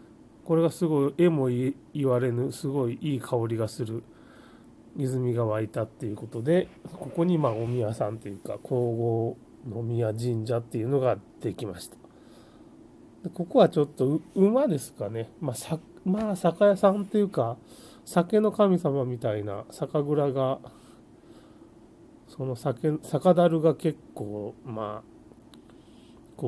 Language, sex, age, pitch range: Japanese, male, 30-49, 115-160 Hz